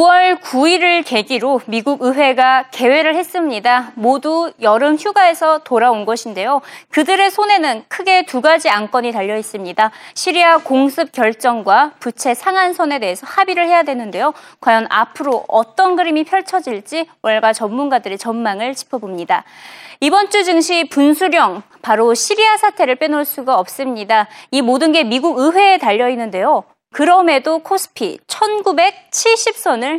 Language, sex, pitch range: Korean, female, 240-345 Hz